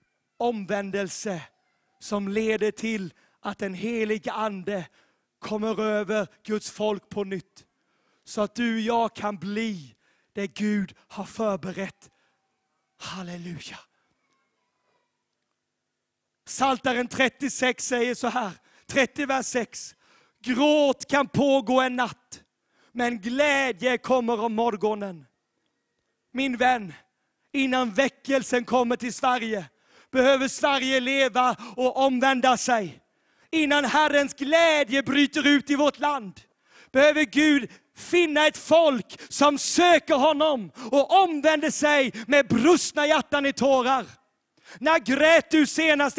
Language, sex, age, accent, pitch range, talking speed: Swedish, male, 30-49, native, 225-300 Hz, 110 wpm